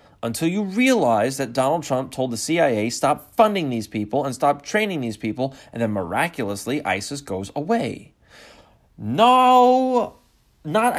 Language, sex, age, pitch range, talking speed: English, male, 30-49, 115-180 Hz, 140 wpm